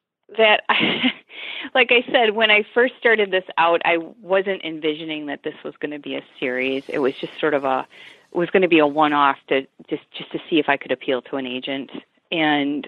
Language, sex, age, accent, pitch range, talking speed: English, female, 30-49, American, 155-220 Hz, 225 wpm